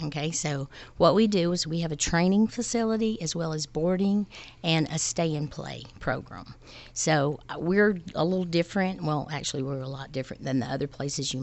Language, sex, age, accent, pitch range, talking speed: English, female, 50-69, American, 145-185 Hz, 185 wpm